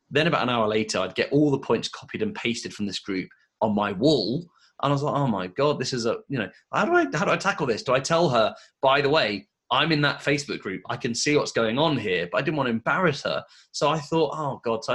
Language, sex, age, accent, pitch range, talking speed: English, male, 30-49, British, 110-160 Hz, 285 wpm